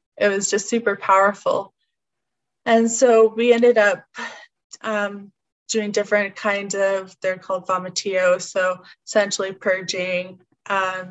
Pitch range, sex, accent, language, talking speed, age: 180-200 Hz, female, American, English, 120 wpm, 20-39